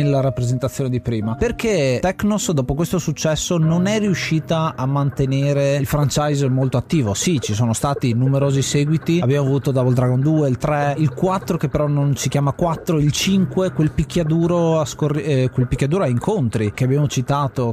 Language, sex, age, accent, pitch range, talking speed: Italian, male, 30-49, native, 125-155 Hz, 180 wpm